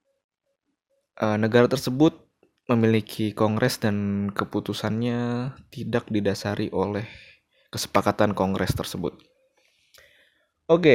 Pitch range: 105-125 Hz